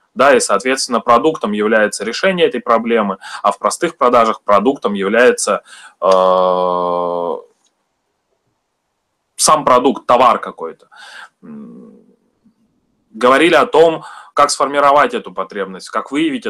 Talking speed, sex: 100 wpm, male